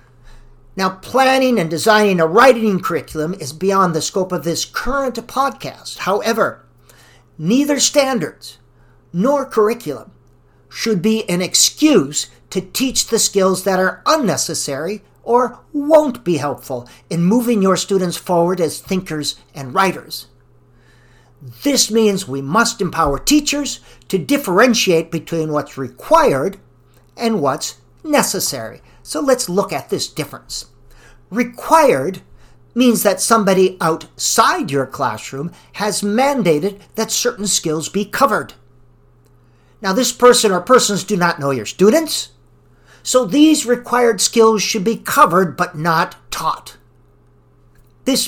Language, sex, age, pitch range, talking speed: English, male, 50-69, 150-230 Hz, 125 wpm